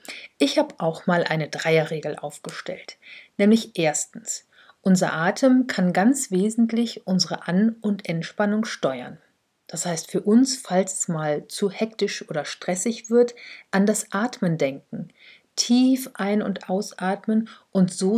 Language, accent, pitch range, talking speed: German, German, 175-225 Hz, 135 wpm